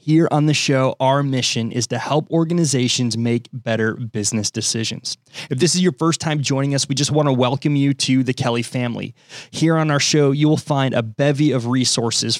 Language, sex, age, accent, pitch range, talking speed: English, male, 20-39, American, 125-150 Hz, 210 wpm